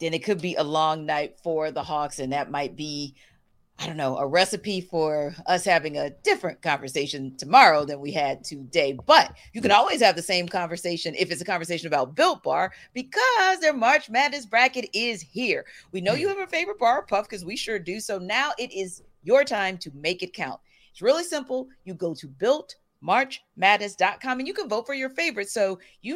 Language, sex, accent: English, female, American